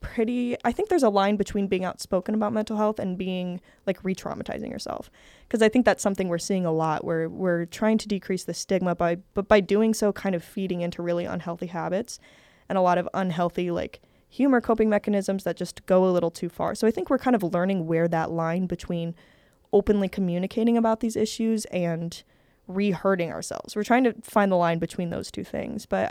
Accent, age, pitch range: American, 10-29, 175-215 Hz